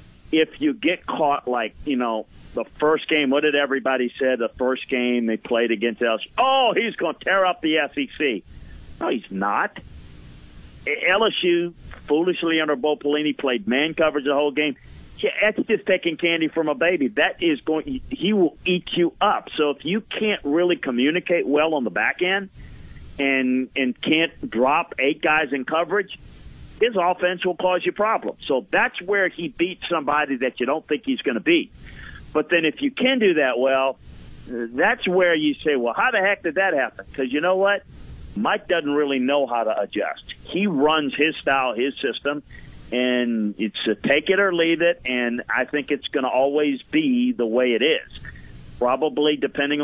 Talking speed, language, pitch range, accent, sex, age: 190 wpm, English, 130-175 Hz, American, male, 50-69